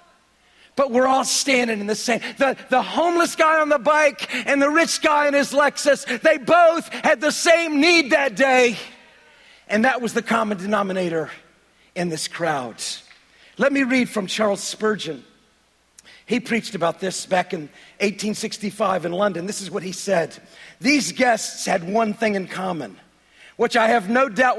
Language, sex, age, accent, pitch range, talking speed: English, male, 40-59, American, 215-275 Hz, 170 wpm